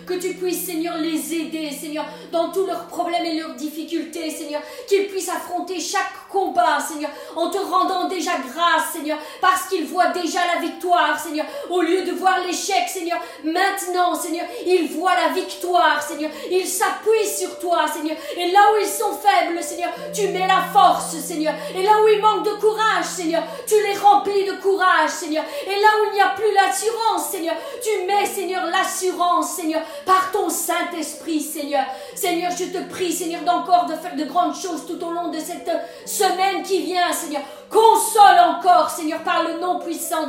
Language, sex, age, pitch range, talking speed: French, female, 40-59, 325-380 Hz, 185 wpm